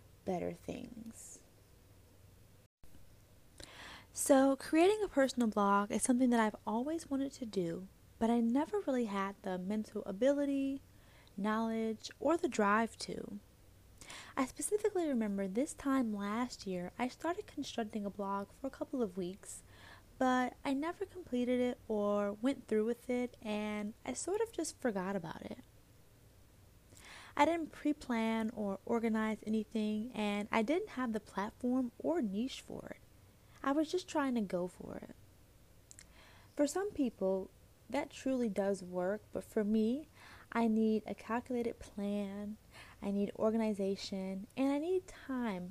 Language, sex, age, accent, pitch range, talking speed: English, female, 10-29, American, 190-255 Hz, 145 wpm